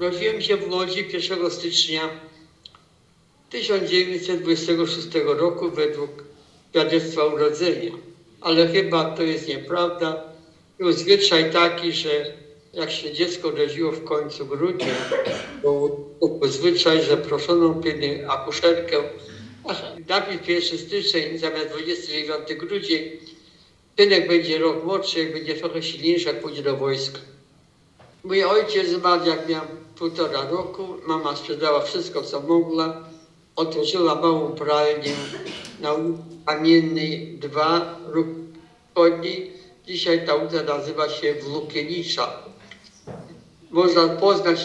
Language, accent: Polish, native